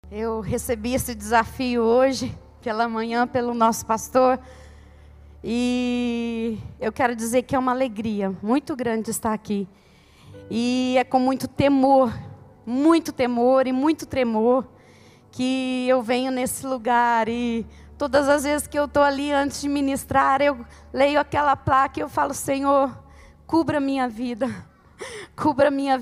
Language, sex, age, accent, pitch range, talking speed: Portuguese, female, 20-39, Brazilian, 225-275 Hz, 140 wpm